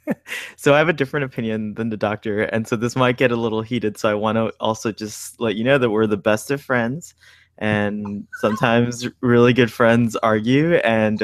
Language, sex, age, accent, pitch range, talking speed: English, male, 20-39, American, 105-125 Hz, 210 wpm